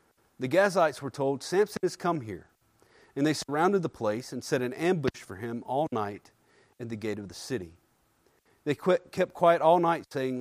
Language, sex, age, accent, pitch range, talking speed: English, male, 40-59, American, 120-170 Hz, 190 wpm